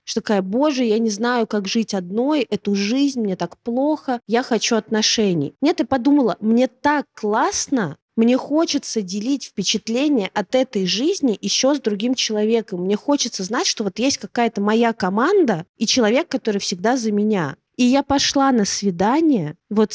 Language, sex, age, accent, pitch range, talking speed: Russian, female, 20-39, native, 190-240 Hz, 165 wpm